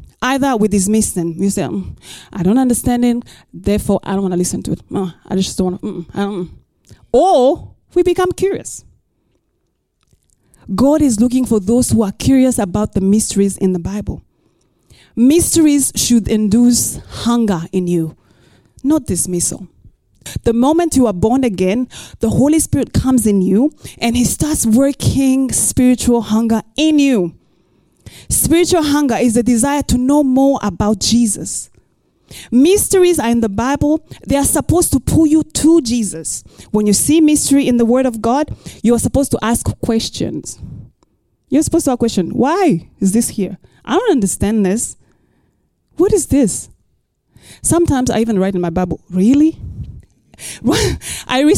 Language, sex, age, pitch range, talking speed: English, female, 20-39, 195-275 Hz, 160 wpm